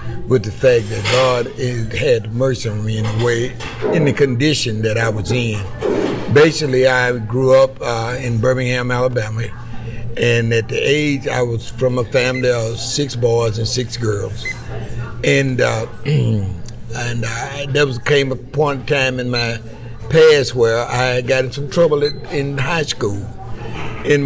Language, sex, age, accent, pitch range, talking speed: English, male, 60-79, American, 115-140 Hz, 165 wpm